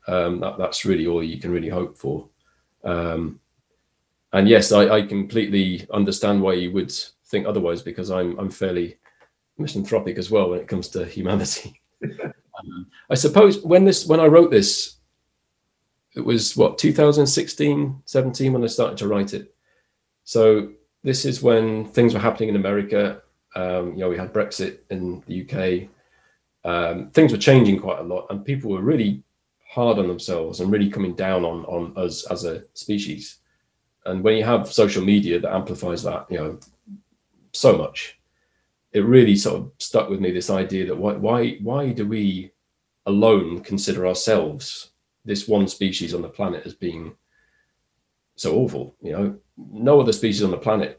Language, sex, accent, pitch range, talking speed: English, male, British, 90-115 Hz, 170 wpm